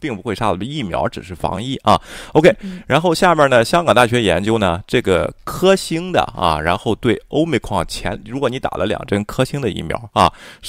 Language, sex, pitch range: Chinese, male, 90-125 Hz